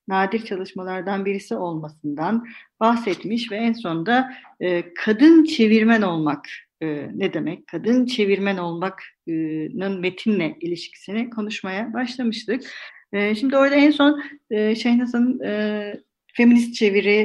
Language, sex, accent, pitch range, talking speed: Turkish, female, native, 200-265 Hz, 95 wpm